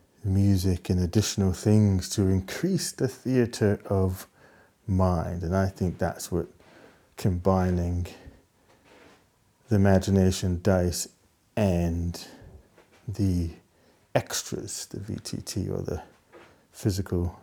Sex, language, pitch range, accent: male, English, 95-115 Hz, British